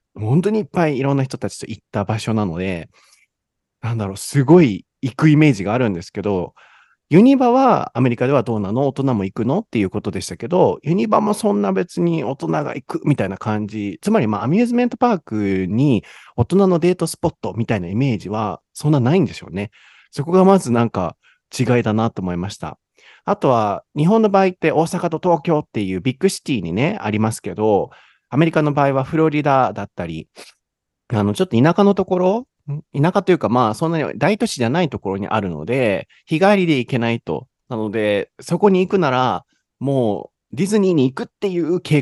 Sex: male